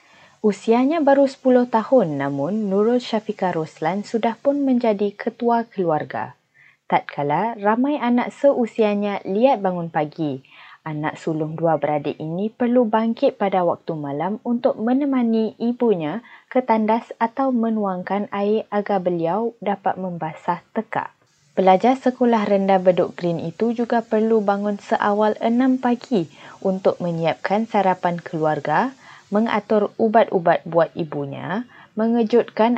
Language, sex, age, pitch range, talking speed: Malay, female, 20-39, 170-230 Hz, 120 wpm